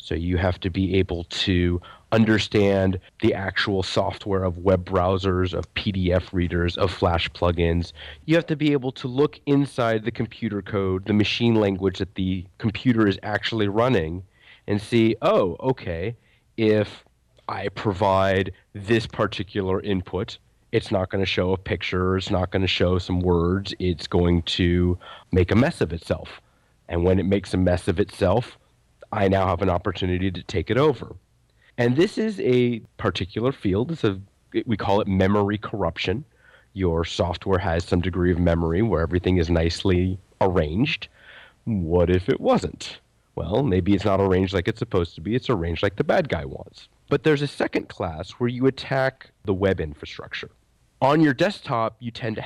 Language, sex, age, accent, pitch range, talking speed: English, male, 30-49, American, 90-115 Hz, 175 wpm